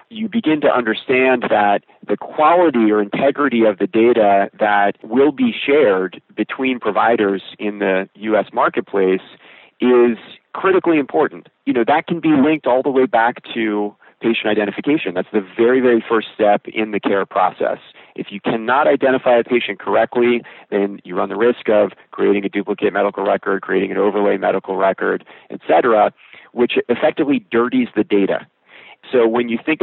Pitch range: 105-130 Hz